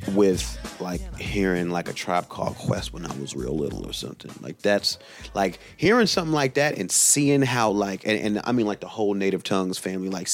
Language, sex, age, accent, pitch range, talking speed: English, male, 30-49, American, 90-100 Hz, 215 wpm